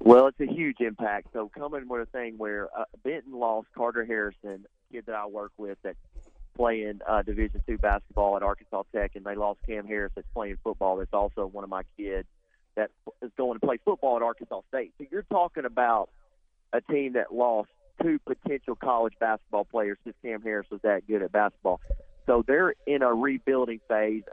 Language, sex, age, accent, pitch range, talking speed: English, male, 40-59, American, 105-120 Hz, 195 wpm